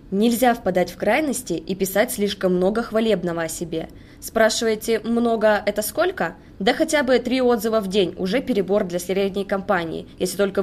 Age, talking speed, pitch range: 20-39, 165 wpm, 180-225 Hz